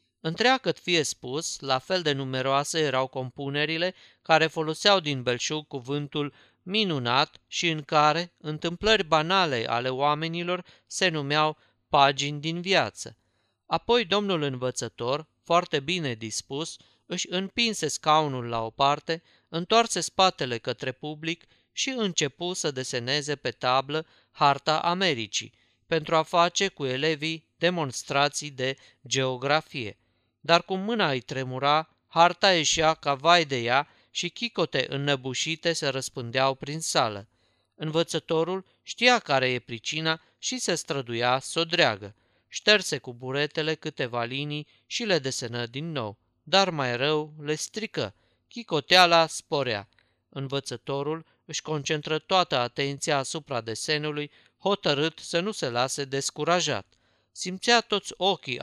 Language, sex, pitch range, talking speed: Romanian, male, 130-170 Hz, 120 wpm